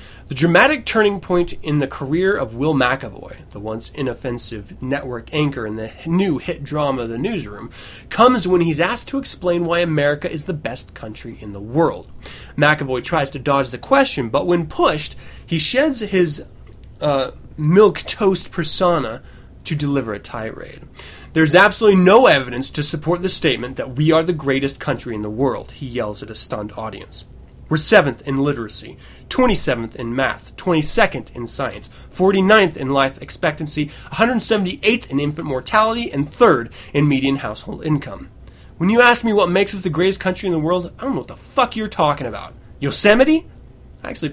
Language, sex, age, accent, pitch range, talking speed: English, male, 20-39, American, 125-180 Hz, 175 wpm